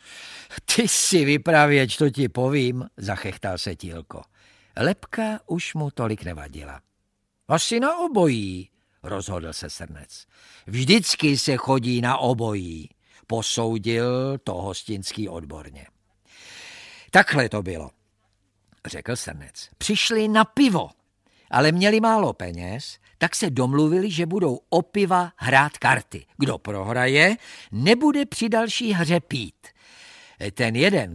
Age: 50-69